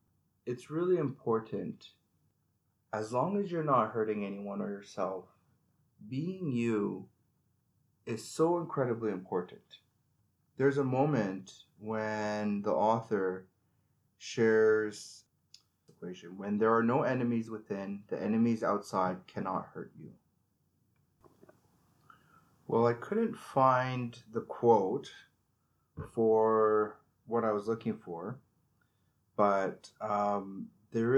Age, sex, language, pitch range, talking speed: 30-49, male, English, 100-125 Hz, 105 wpm